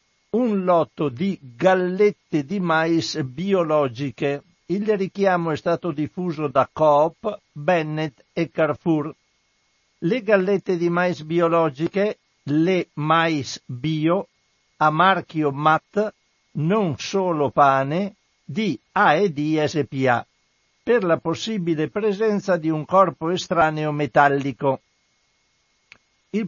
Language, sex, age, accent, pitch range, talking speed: Italian, male, 60-79, native, 150-185 Hz, 100 wpm